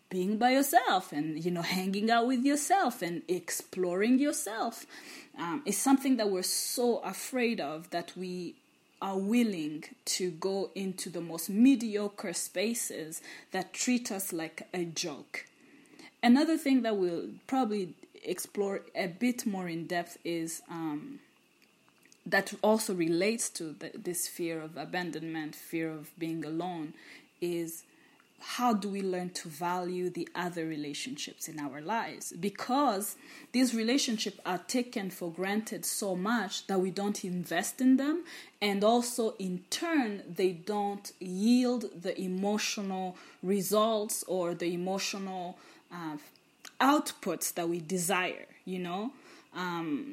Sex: female